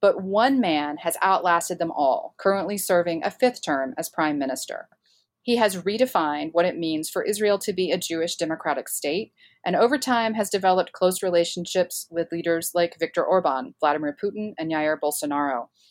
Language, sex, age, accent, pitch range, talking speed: English, female, 30-49, American, 160-210 Hz, 175 wpm